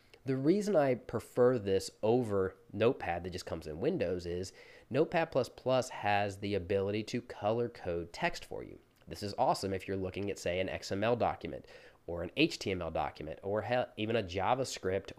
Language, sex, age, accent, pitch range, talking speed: English, male, 30-49, American, 95-125 Hz, 165 wpm